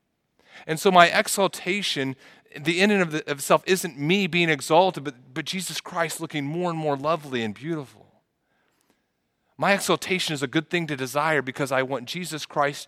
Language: English